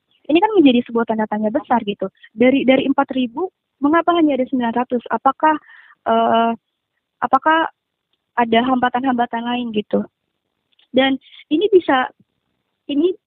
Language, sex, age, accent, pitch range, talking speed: Indonesian, female, 20-39, native, 225-295 Hz, 120 wpm